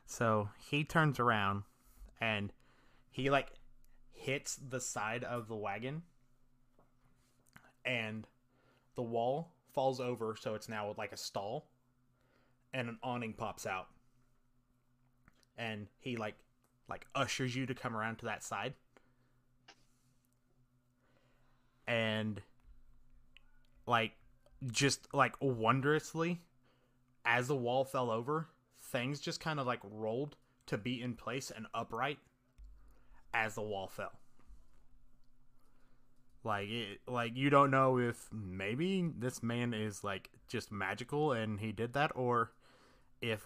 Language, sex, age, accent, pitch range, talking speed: English, male, 20-39, American, 110-130 Hz, 120 wpm